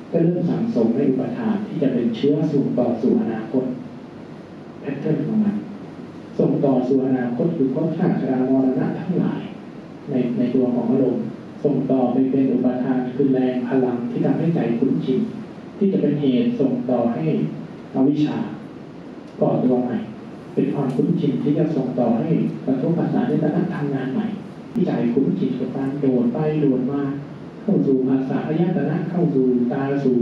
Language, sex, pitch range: Thai, male, 130-185 Hz